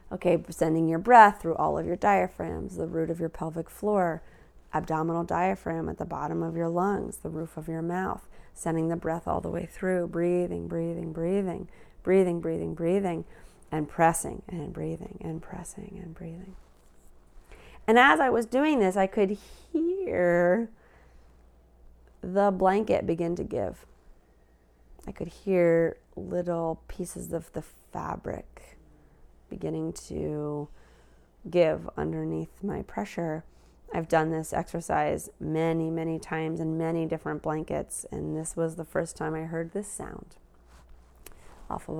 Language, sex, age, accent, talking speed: English, female, 30-49, American, 145 wpm